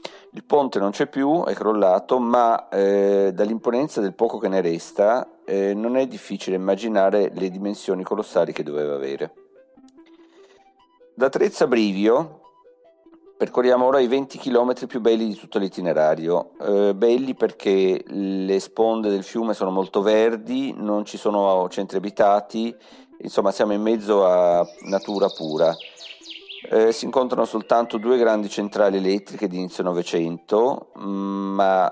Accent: native